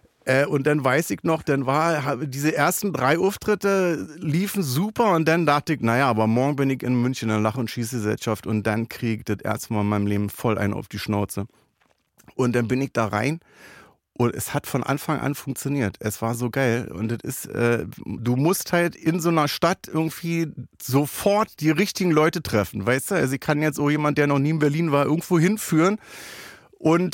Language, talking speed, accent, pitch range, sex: German, 205 wpm, German, 115-175 Hz, male